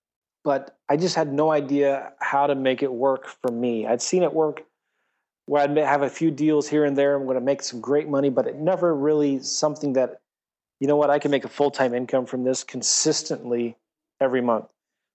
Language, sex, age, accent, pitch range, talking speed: English, male, 30-49, American, 130-150 Hz, 215 wpm